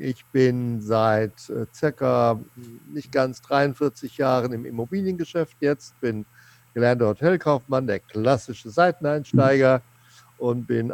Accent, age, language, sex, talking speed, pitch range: German, 60-79, German, male, 105 wpm, 120-135 Hz